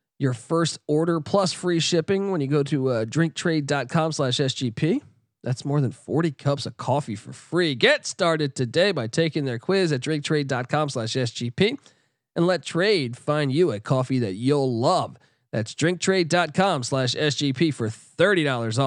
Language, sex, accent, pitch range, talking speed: English, male, American, 135-190 Hz, 140 wpm